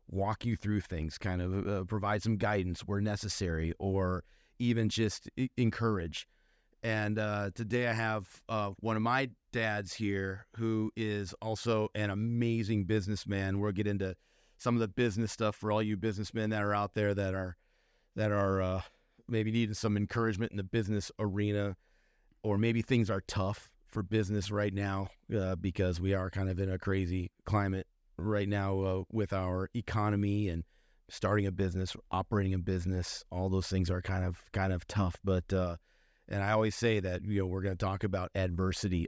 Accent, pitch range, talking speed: American, 90-105 Hz, 185 wpm